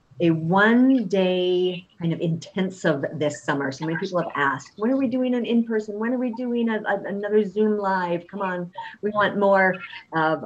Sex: female